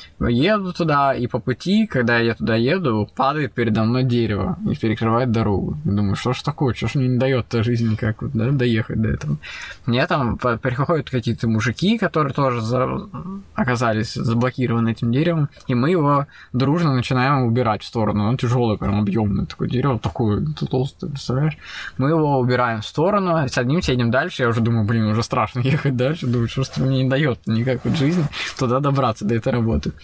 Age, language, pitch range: 20-39, Russian, 115-140 Hz